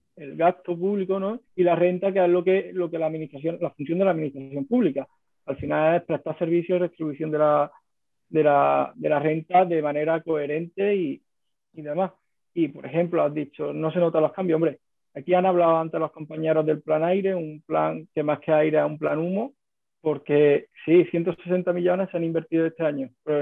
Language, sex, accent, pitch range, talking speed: Spanish, male, Spanish, 155-180 Hz, 210 wpm